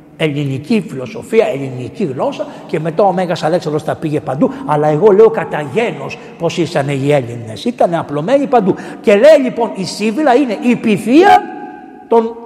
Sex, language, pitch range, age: male, Greek, 150-200 Hz, 60-79